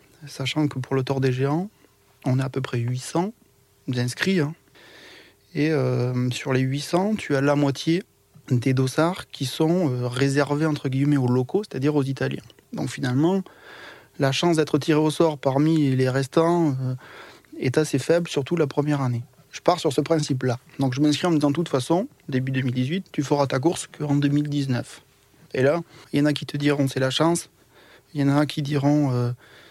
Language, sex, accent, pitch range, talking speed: French, male, French, 135-160 Hz, 195 wpm